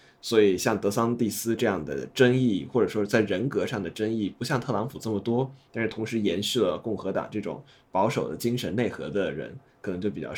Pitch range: 110-130 Hz